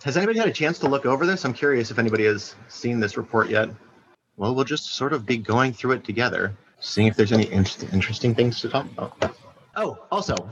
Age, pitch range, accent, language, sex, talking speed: 30-49, 115-140 Hz, American, English, male, 220 wpm